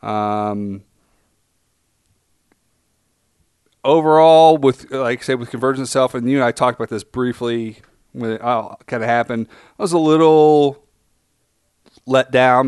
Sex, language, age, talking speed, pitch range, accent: male, English, 30-49, 135 wpm, 110-130 Hz, American